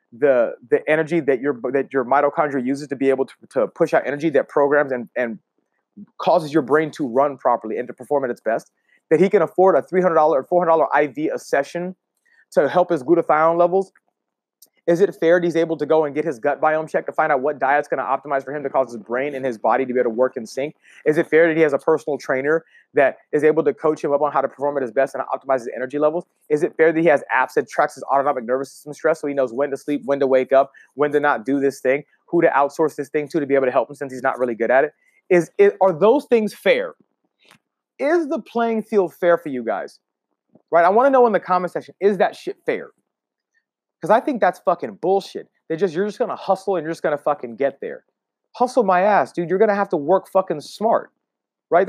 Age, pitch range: 30-49, 140-180 Hz